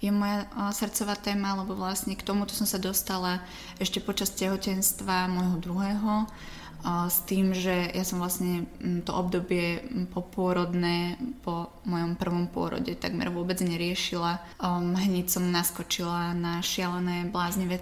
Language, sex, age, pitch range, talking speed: Slovak, female, 20-39, 175-195 Hz, 135 wpm